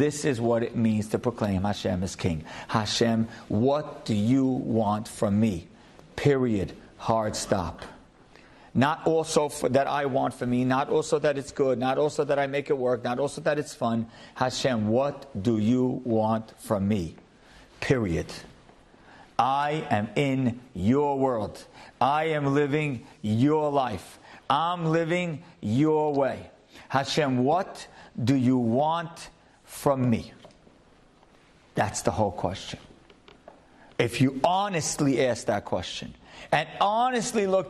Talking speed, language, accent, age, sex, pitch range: 140 wpm, English, American, 50-69, male, 115-170 Hz